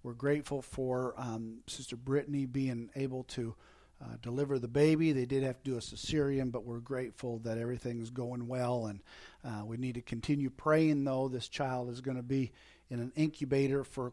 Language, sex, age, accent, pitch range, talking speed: English, male, 50-69, American, 115-145 Hz, 190 wpm